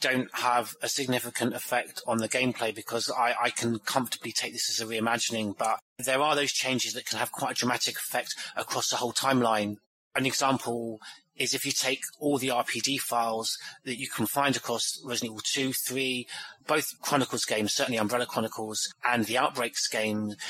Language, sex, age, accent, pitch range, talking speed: English, male, 30-49, British, 115-135 Hz, 185 wpm